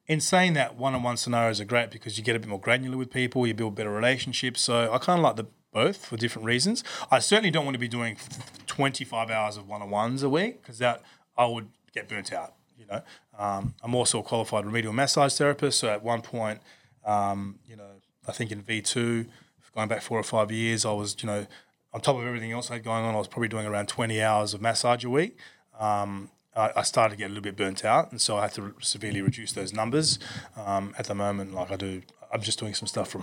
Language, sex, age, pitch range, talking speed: English, male, 20-39, 105-130 Hz, 240 wpm